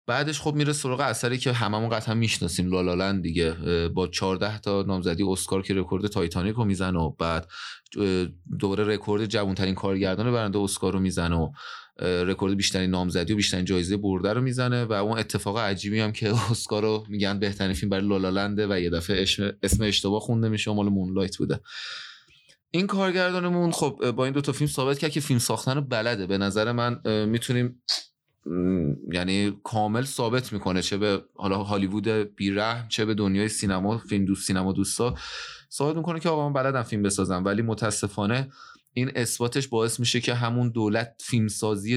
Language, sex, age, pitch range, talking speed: Persian, male, 30-49, 95-115 Hz, 170 wpm